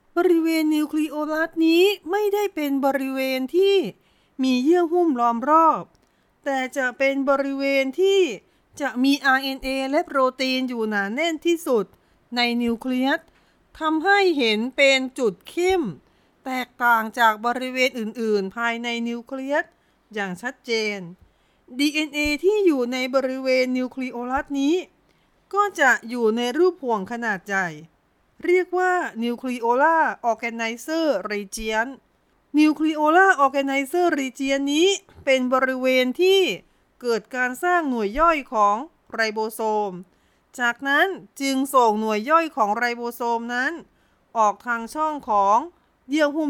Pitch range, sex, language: 235-310 Hz, female, Thai